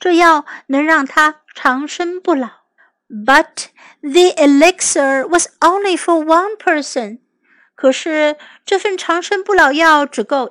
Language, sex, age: Chinese, female, 50-69